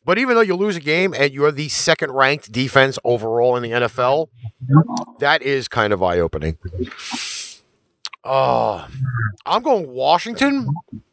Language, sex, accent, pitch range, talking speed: English, male, American, 110-160 Hz, 140 wpm